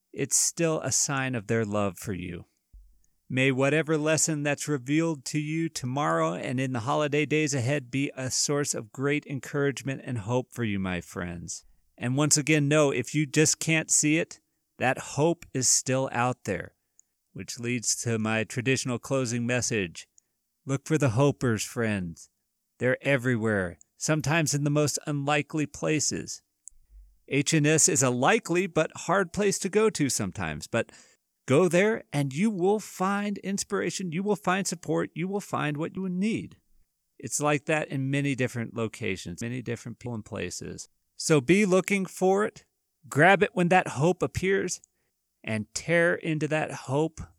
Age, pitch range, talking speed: 40-59, 115-155 Hz, 160 wpm